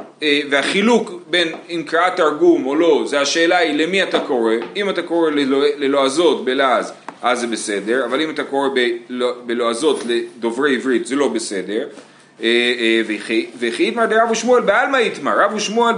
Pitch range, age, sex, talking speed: 140-210 Hz, 40-59, male, 155 wpm